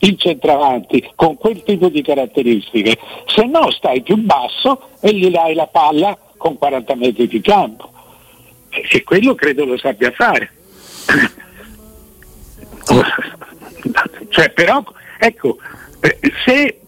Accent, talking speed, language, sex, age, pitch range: native, 115 wpm, Italian, male, 60-79, 150-230 Hz